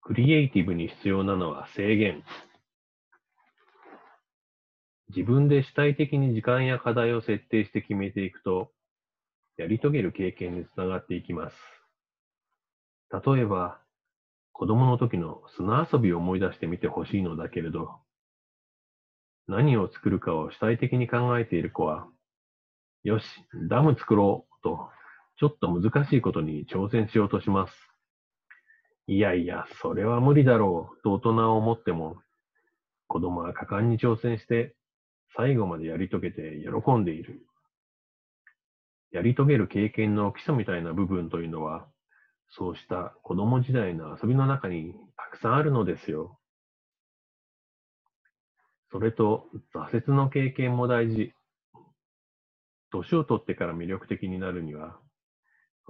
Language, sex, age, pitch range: Japanese, male, 40-59, 90-125 Hz